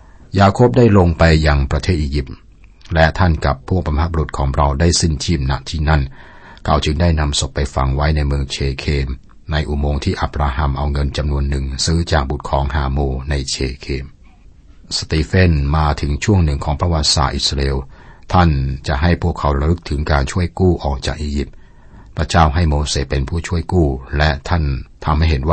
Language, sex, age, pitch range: Thai, male, 60-79, 70-85 Hz